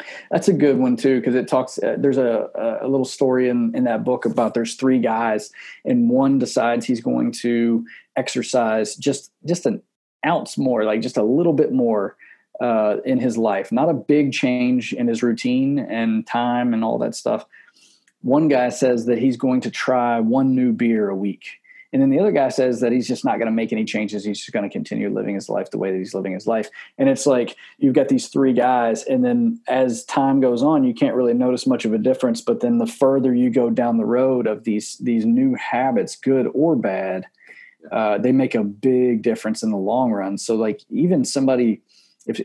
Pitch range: 115-170 Hz